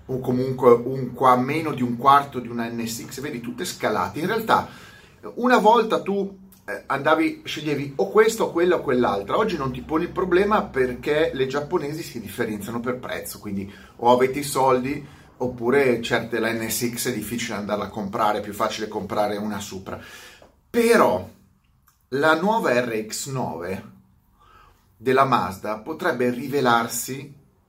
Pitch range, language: 105-135 Hz, Italian